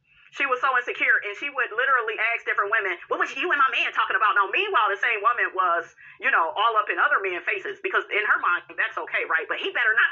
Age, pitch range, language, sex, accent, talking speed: 30-49, 235-385 Hz, English, female, American, 260 wpm